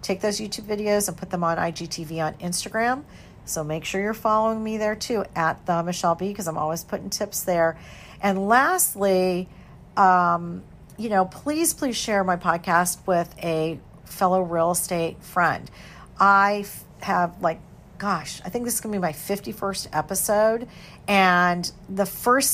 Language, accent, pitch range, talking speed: English, American, 170-210 Hz, 160 wpm